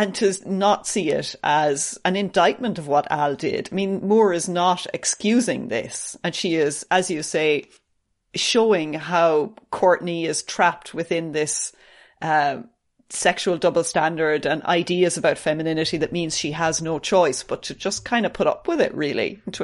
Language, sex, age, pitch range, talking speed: English, female, 30-49, 160-215 Hz, 175 wpm